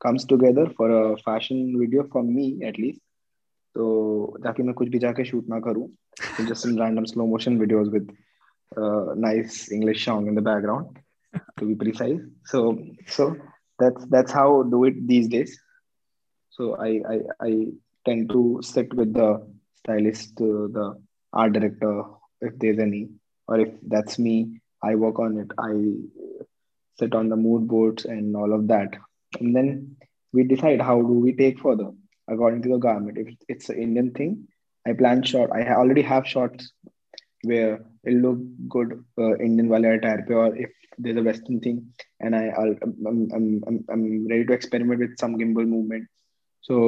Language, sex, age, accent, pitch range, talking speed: Hindi, male, 20-39, native, 110-125 Hz, 125 wpm